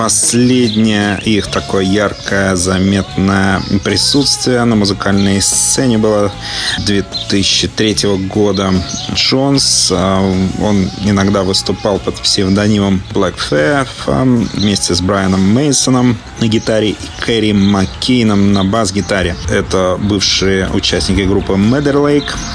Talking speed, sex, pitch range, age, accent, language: 95 wpm, male, 95-110 Hz, 30-49, native, Russian